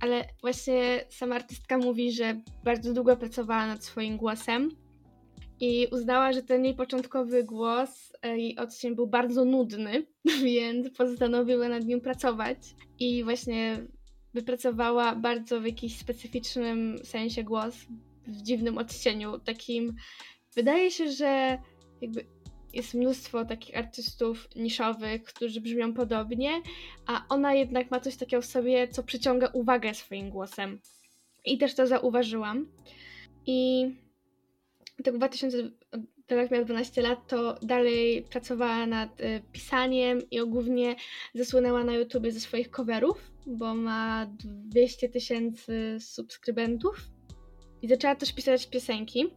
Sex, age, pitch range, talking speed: female, 10-29, 230-255 Hz, 120 wpm